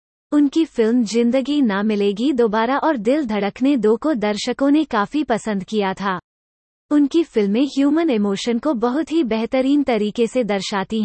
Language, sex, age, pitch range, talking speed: English, female, 30-49, 205-270 Hz, 150 wpm